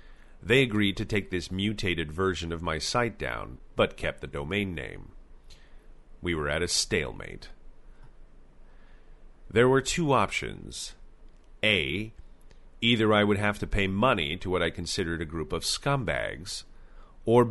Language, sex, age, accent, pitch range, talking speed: English, male, 40-59, American, 75-105 Hz, 145 wpm